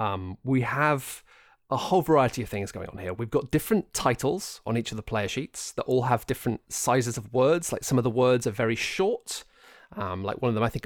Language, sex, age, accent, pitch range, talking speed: English, male, 30-49, British, 105-135 Hz, 240 wpm